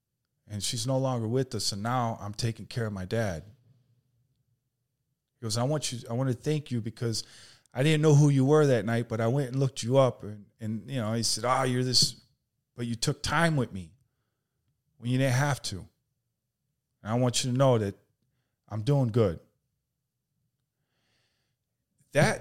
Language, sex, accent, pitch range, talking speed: English, male, American, 115-140 Hz, 195 wpm